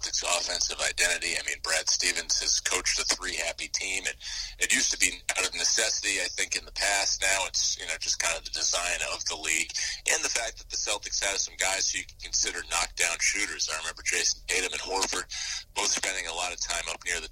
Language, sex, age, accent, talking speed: English, male, 30-49, American, 230 wpm